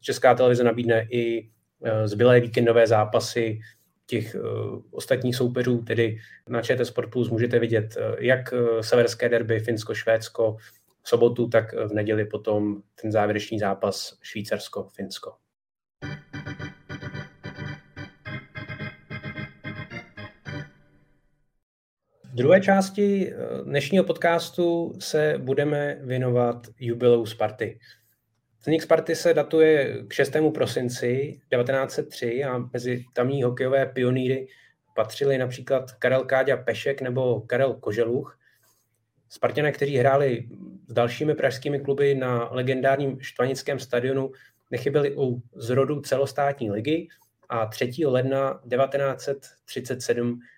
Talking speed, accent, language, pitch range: 95 wpm, native, Czech, 115-135 Hz